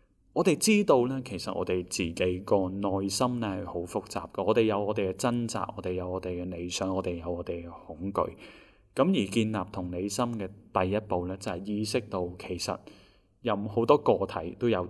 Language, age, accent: Chinese, 20-39, native